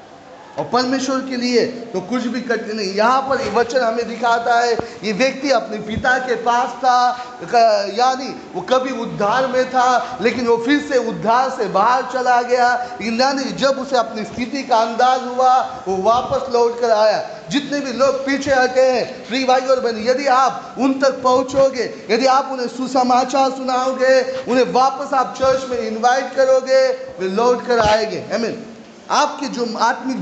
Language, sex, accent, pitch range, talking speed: Hindi, male, native, 220-260 Hz, 165 wpm